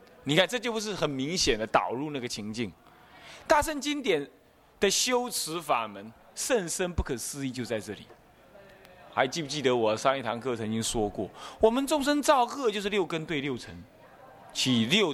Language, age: Chinese, 30-49